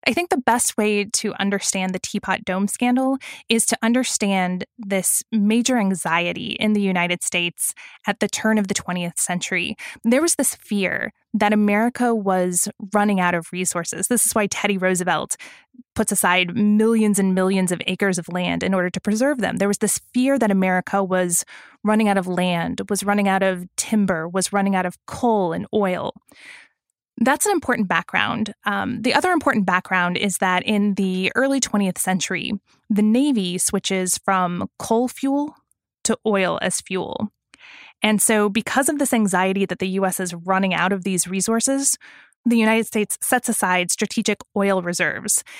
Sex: female